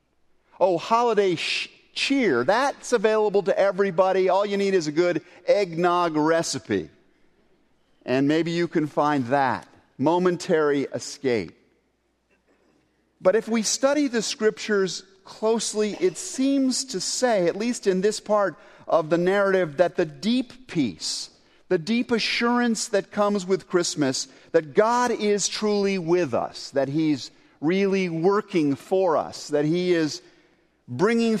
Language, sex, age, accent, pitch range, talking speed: English, male, 50-69, American, 145-205 Hz, 130 wpm